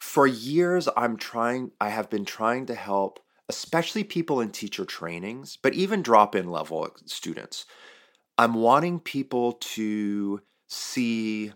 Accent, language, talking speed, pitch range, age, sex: American, English, 130 wpm, 100-140 Hz, 30-49, male